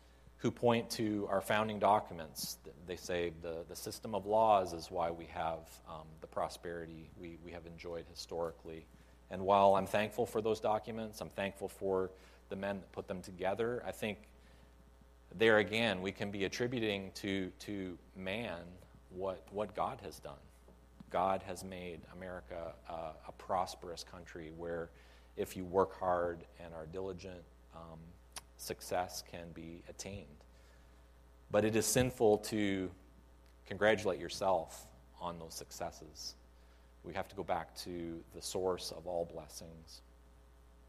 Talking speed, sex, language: 145 wpm, male, English